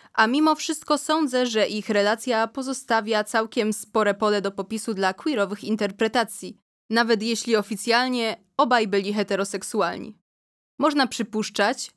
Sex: female